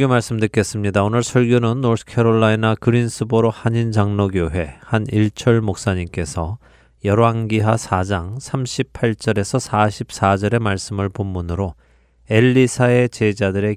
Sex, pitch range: male, 95-115 Hz